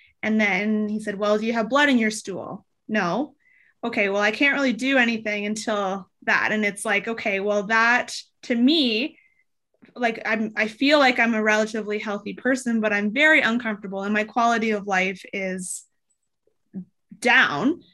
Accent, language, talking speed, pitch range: American, English, 170 wpm, 205-250 Hz